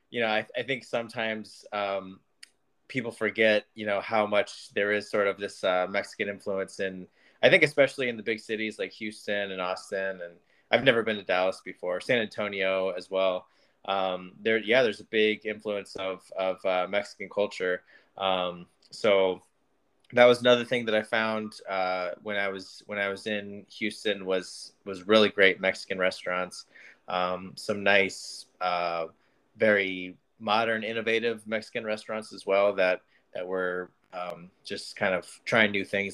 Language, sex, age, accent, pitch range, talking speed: English, male, 20-39, American, 95-110 Hz, 170 wpm